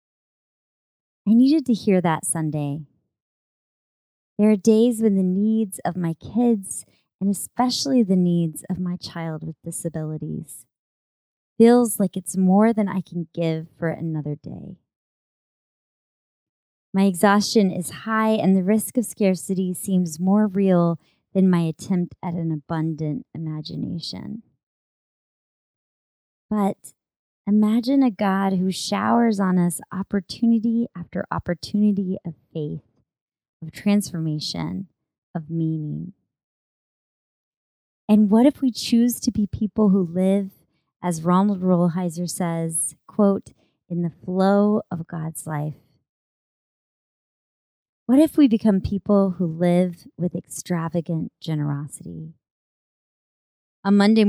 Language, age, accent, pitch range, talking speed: English, 30-49, American, 165-205 Hz, 115 wpm